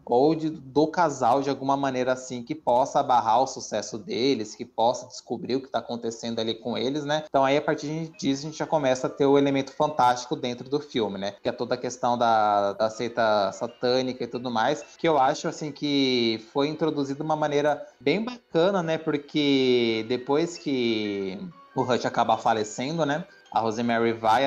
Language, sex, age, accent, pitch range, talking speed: Portuguese, male, 20-39, Brazilian, 125-160 Hz, 195 wpm